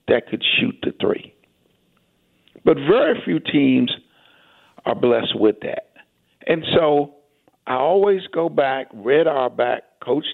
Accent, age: American, 60-79